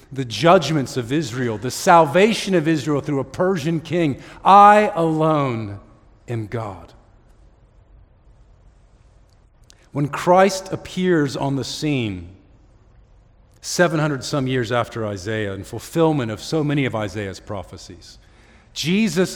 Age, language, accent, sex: 50-69, English, American, male